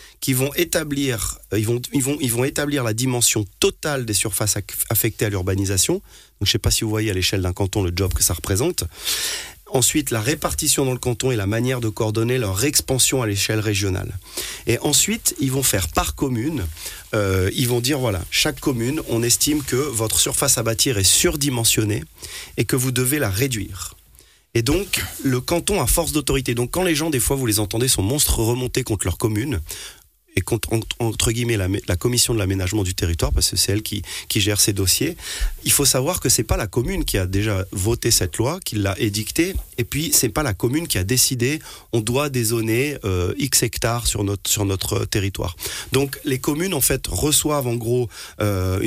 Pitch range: 100-130 Hz